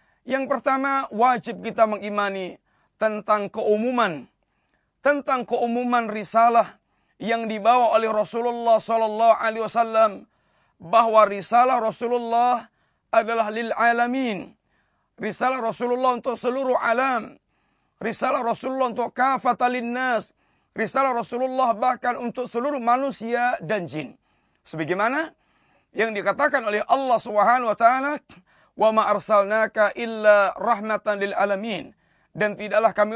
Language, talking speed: Malay, 105 wpm